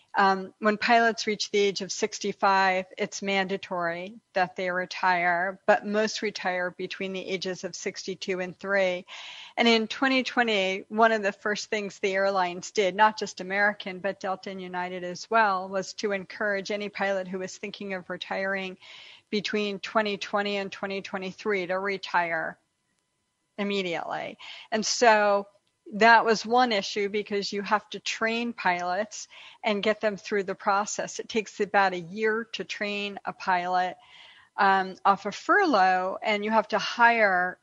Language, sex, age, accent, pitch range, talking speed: English, female, 50-69, American, 185-210 Hz, 155 wpm